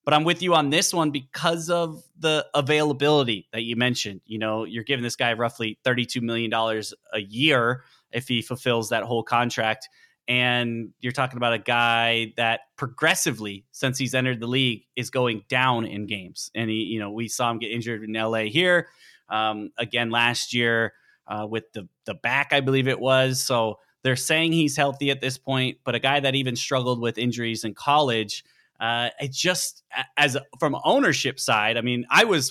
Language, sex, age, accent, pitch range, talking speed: English, male, 20-39, American, 115-135 Hz, 190 wpm